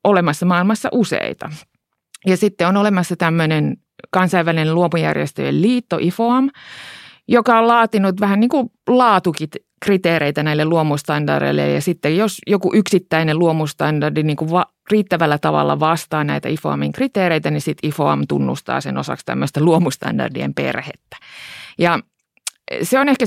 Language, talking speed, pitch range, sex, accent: Finnish, 125 wpm, 155-200 Hz, female, native